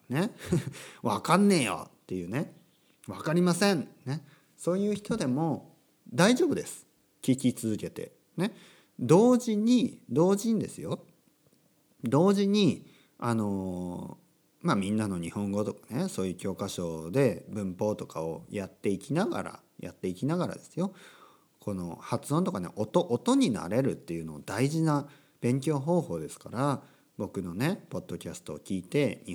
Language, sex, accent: Japanese, male, native